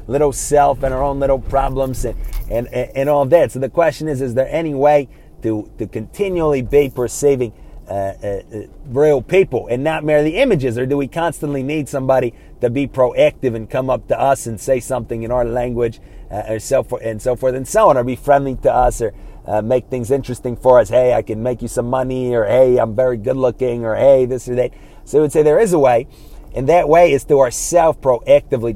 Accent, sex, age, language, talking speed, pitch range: American, male, 30-49, English, 225 wpm, 120-145 Hz